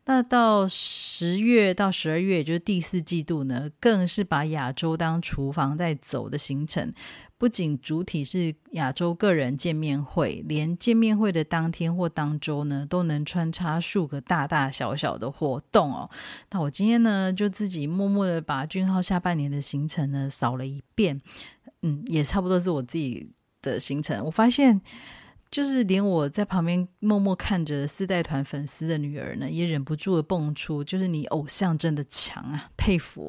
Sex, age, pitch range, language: female, 30-49, 150-190 Hz, Chinese